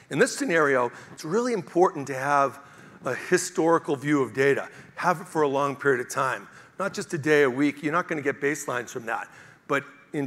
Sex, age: male, 50-69